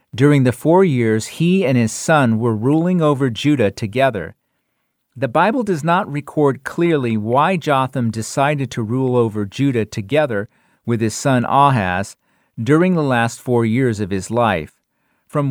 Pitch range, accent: 110-160 Hz, American